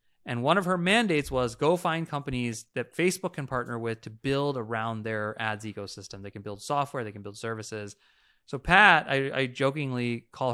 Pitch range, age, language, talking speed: 110-140 Hz, 30-49, English, 195 wpm